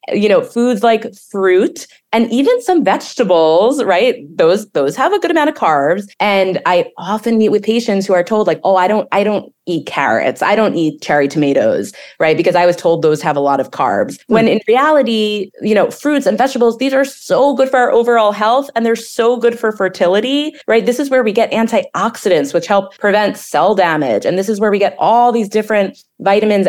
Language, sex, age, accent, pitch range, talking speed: English, female, 20-39, American, 160-225 Hz, 215 wpm